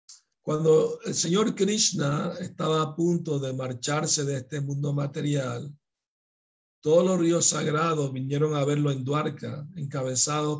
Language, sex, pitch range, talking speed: Spanish, male, 140-165 Hz, 130 wpm